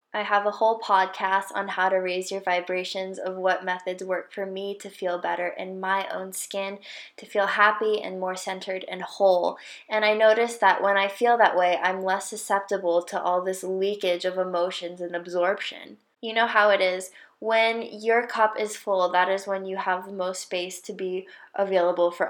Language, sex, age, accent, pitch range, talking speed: English, female, 10-29, American, 185-220 Hz, 200 wpm